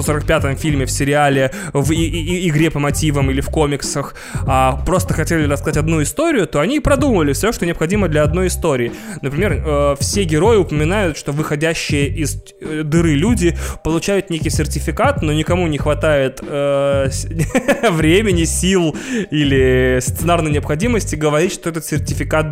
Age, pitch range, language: 20-39, 135-165 Hz, Russian